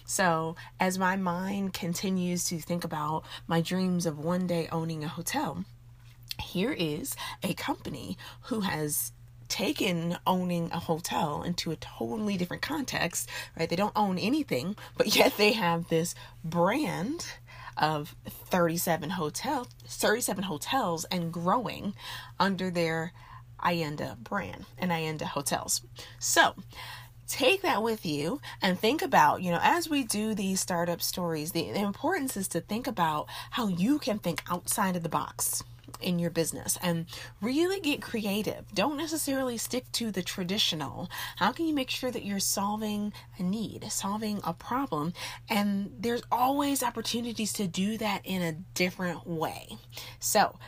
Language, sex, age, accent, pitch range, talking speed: English, female, 30-49, American, 150-210 Hz, 150 wpm